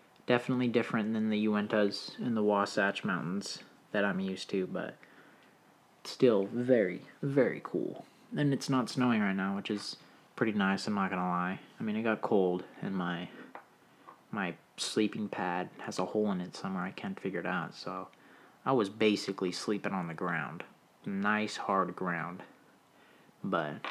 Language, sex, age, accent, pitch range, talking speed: English, male, 20-39, American, 95-120 Hz, 165 wpm